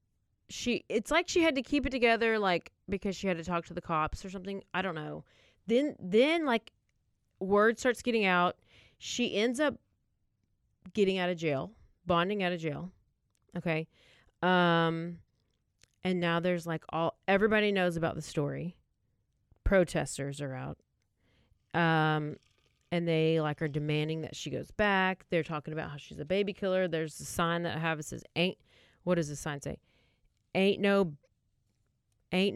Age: 30-49